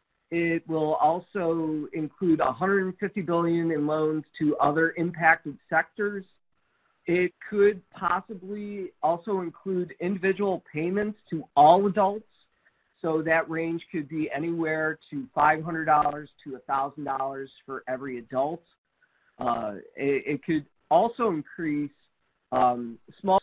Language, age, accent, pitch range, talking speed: English, 50-69, American, 150-195 Hz, 110 wpm